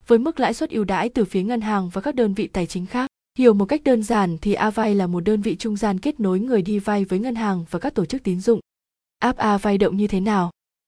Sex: female